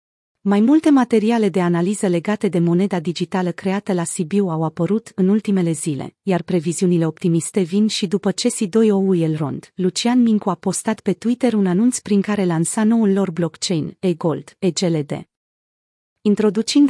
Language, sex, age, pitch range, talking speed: Romanian, female, 30-49, 175-220 Hz, 155 wpm